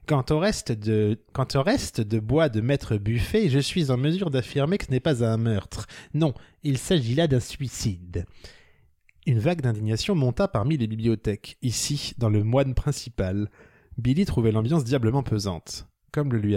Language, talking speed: French, 170 wpm